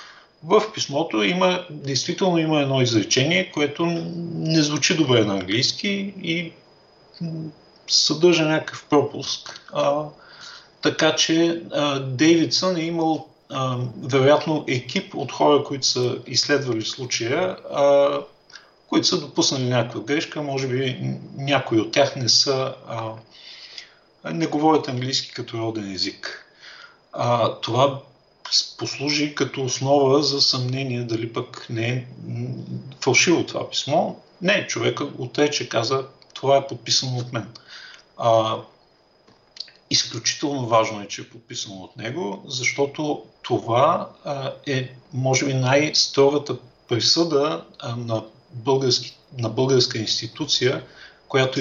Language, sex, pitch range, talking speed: English, male, 120-150 Hz, 110 wpm